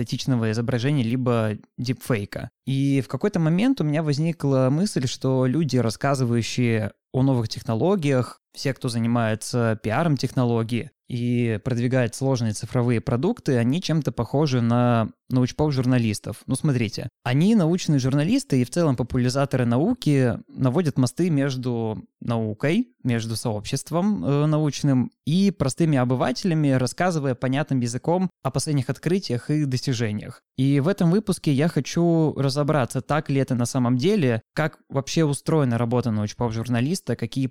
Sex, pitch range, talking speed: male, 115-140 Hz, 130 wpm